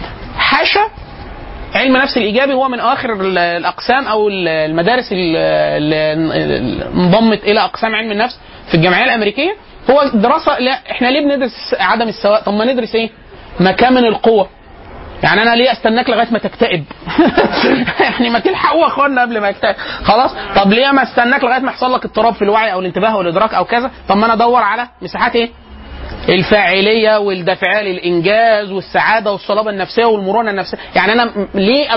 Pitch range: 195-245 Hz